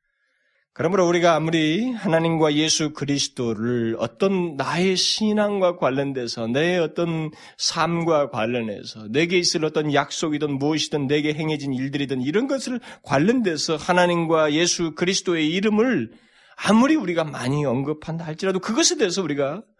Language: Korean